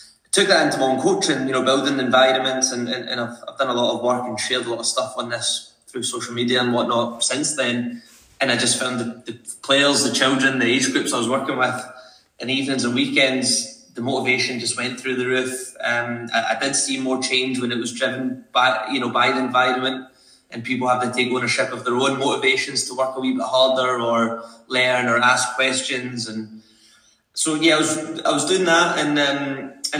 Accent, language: British, English